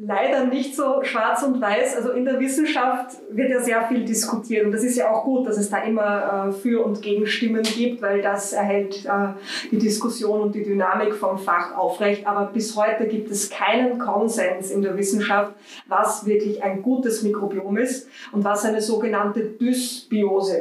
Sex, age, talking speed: female, 20-39, 185 wpm